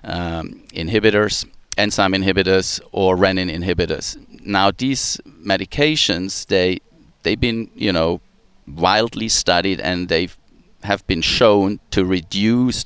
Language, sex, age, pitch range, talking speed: English, male, 40-59, 90-110 Hz, 105 wpm